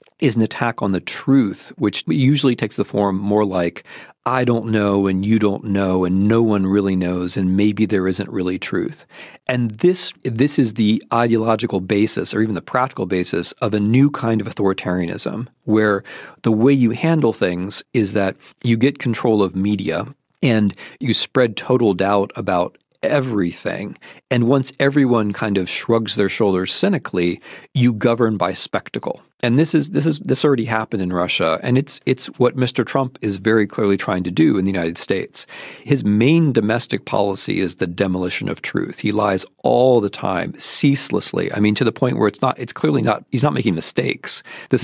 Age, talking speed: 40-59, 185 wpm